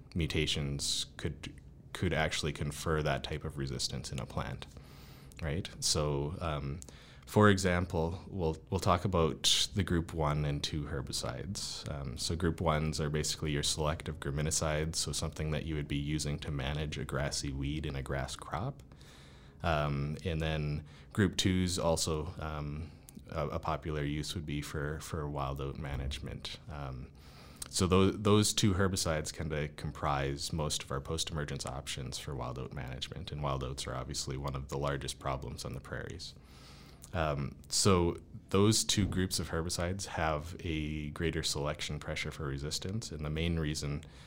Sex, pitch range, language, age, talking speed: male, 70-80 Hz, English, 20-39, 160 wpm